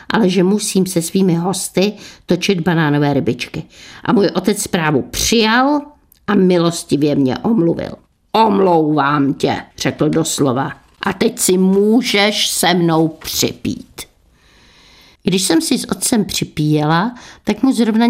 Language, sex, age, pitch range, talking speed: Czech, female, 50-69, 165-220 Hz, 125 wpm